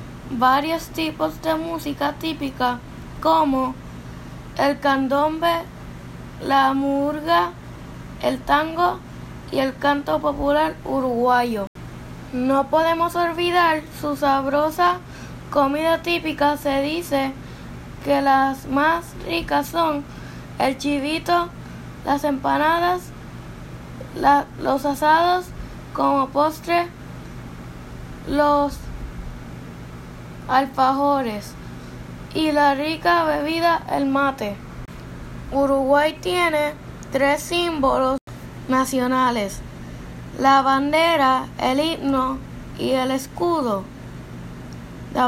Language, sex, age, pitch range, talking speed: Spanish, female, 10-29, 265-315 Hz, 80 wpm